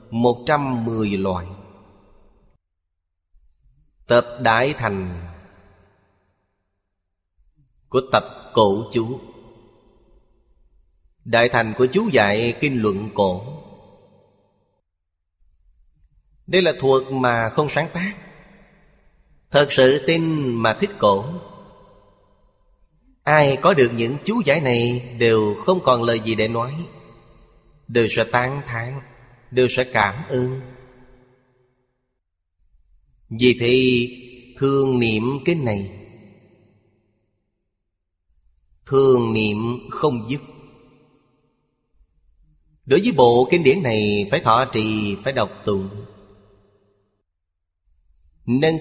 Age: 20-39